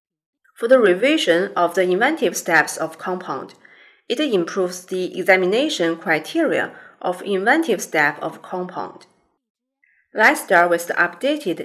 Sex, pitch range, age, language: female, 170-215 Hz, 30-49, Chinese